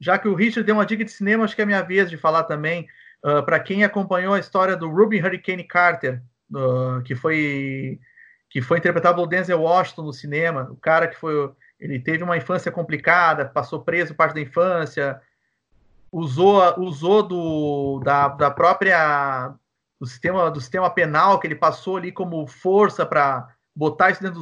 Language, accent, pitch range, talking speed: Portuguese, Brazilian, 150-205 Hz, 180 wpm